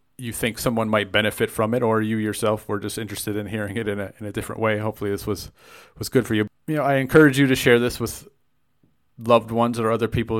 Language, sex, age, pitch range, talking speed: English, male, 30-49, 105-120 Hz, 250 wpm